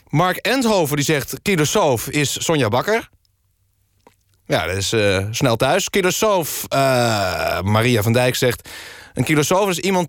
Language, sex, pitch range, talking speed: Dutch, male, 100-145 Hz, 145 wpm